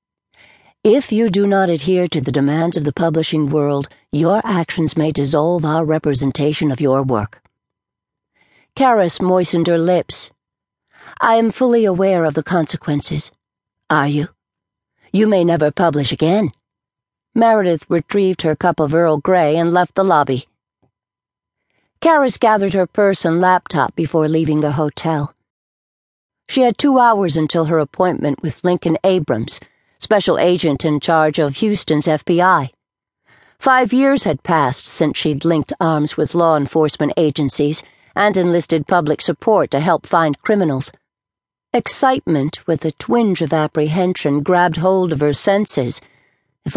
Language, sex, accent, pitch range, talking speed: English, female, American, 150-185 Hz, 140 wpm